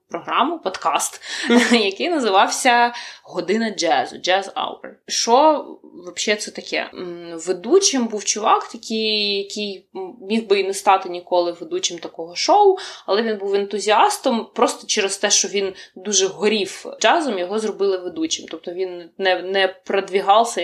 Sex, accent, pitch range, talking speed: female, native, 180-230 Hz, 135 wpm